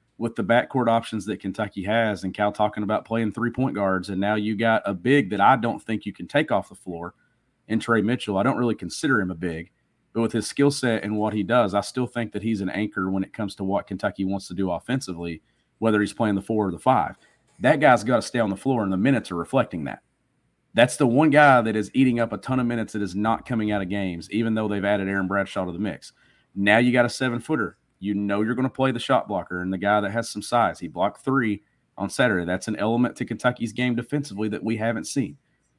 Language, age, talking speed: English, 40-59, 255 wpm